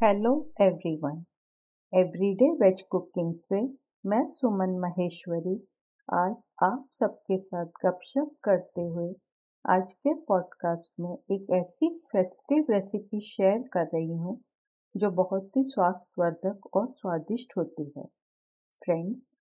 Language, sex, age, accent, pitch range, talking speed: Hindi, female, 50-69, native, 175-225 Hz, 115 wpm